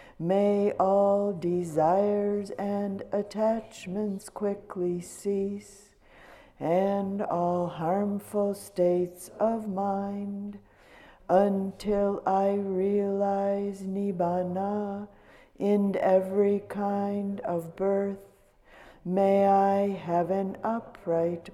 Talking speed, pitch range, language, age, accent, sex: 75 wpm, 190-200 Hz, English, 60-79, American, female